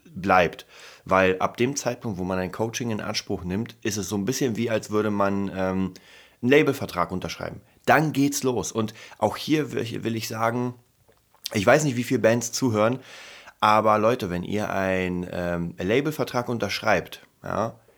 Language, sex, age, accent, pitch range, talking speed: German, male, 30-49, German, 100-120 Hz, 175 wpm